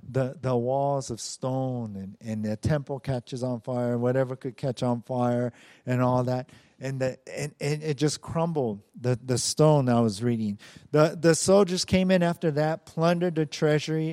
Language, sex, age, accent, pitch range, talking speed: English, male, 50-69, American, 120-155 Hz, 185 wpm